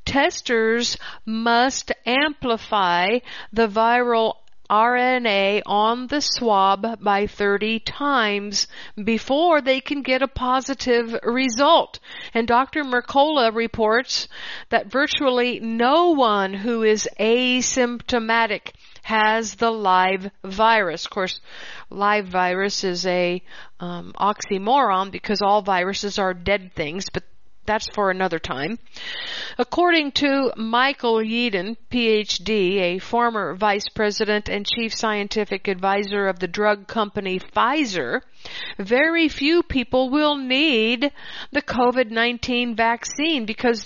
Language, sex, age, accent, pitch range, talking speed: English, female, 50-69, American, 205-255 Hz, 110 wpm